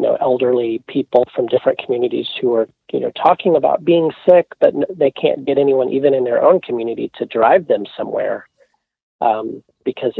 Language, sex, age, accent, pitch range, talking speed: English, male, 40-59, American, 135-180 Hz, 175 wpm